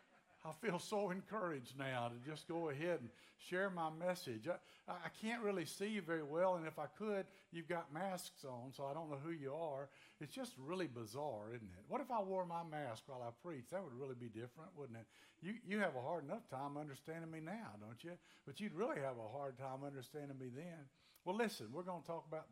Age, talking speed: 60-79, 230 wpm